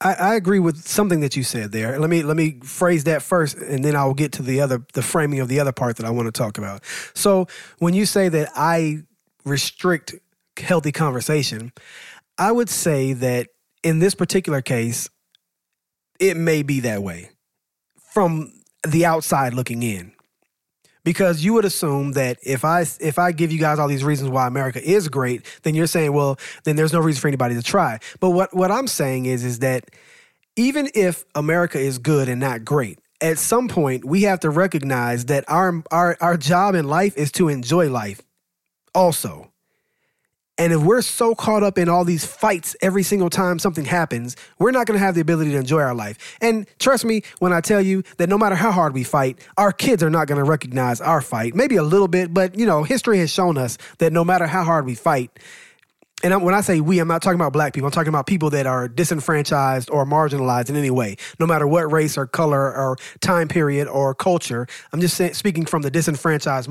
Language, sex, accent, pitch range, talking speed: English, male, American, 135-180 Hz, 210 wpm